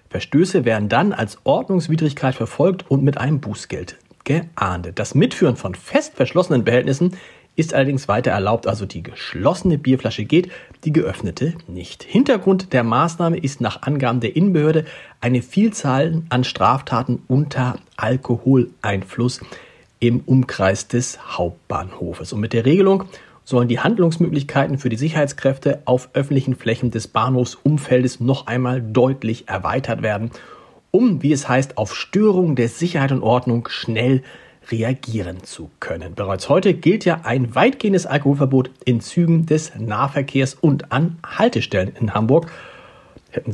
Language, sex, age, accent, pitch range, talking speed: German, male, 40-59, German, 120-165 Hz, 135 wpm